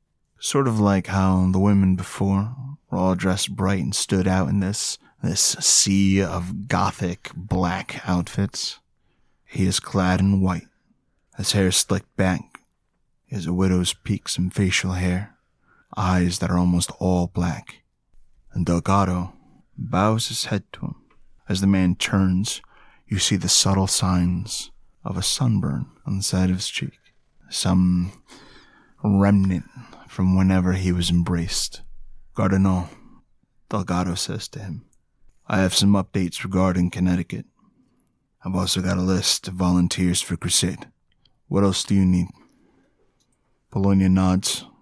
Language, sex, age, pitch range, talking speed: English, male, 30-49, 90-100 Hz, 140 wpm